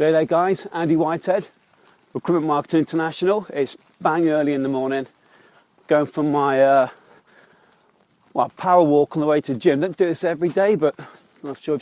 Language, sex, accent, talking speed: English, male, British, 190 wpm